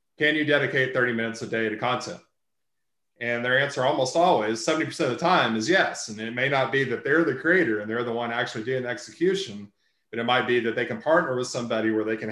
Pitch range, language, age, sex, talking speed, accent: 115-135 Hz, English, 30-49, male, 240 wpm, American